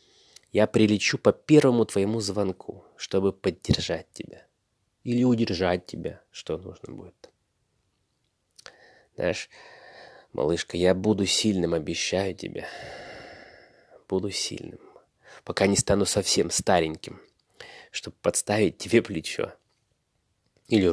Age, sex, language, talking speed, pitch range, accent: 20-39, male, Russian, 95 wpm, 90-110 Hz, native